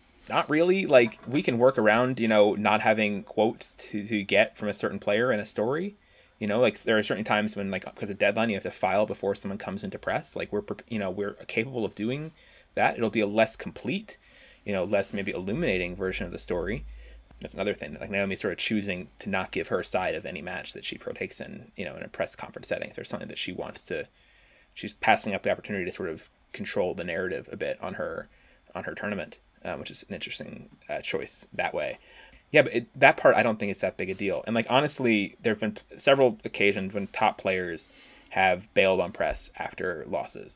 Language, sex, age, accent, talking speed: English, male, 20-39, American, 230 wpm